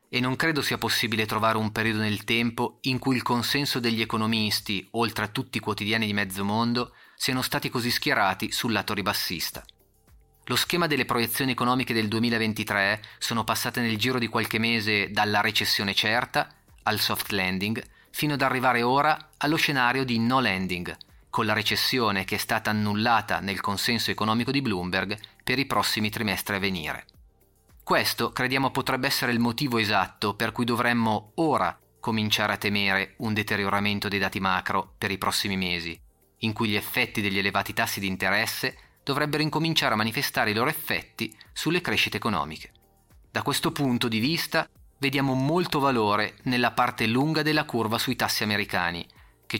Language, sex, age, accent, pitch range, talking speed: Italian, male, 30-49, native, 100-125 Hz, 165 wpm